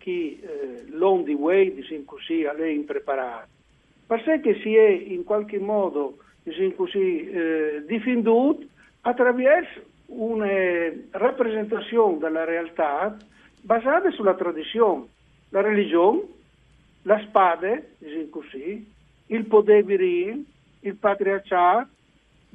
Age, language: 60-79, Italian